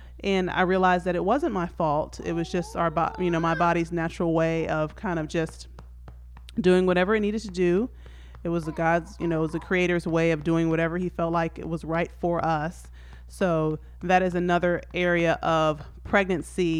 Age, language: 30-49, English